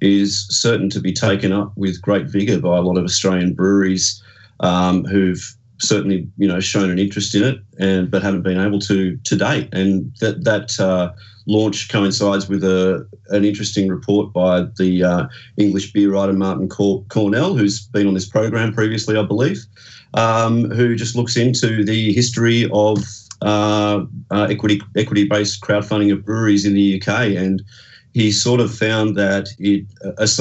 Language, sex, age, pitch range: English, male, 30-49, 95-105 Hz